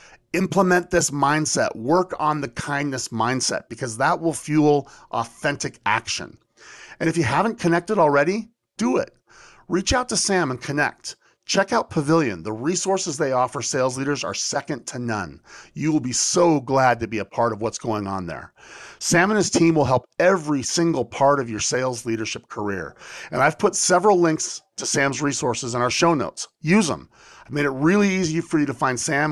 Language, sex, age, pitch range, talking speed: English, male, 40-59, 125-165 Hz, 190 wpm